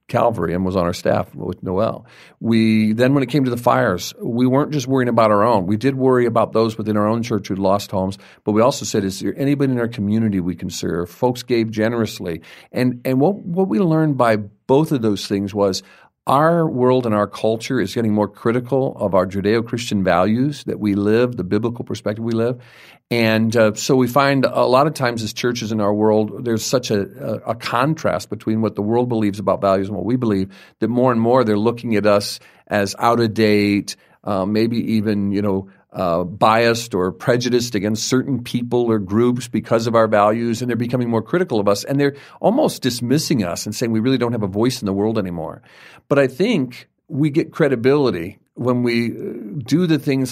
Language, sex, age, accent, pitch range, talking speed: English, male, 50-69, American, 105-125 Hz, 210 wpm